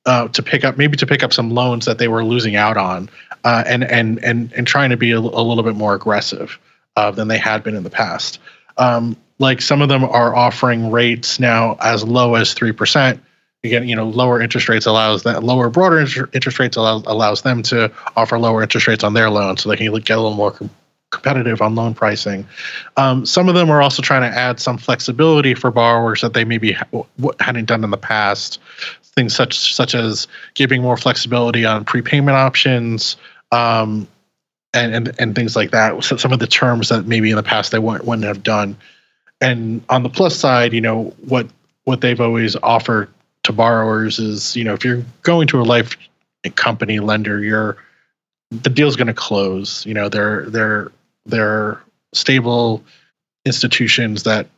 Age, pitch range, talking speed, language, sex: 20-39, 110-125 Hz, 200 wpm, English, male